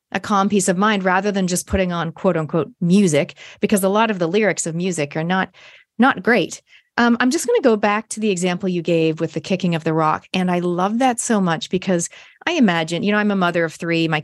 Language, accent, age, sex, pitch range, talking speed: English, American, 30-49, female, 170-230 Hz, 255 wpm